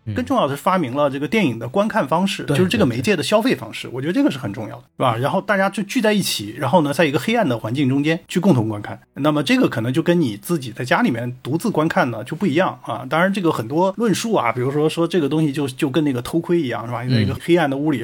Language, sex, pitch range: Chinese, male, 125-175 Hz